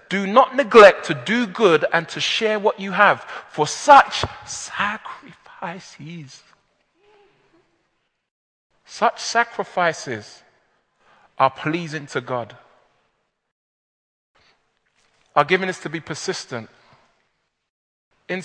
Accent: British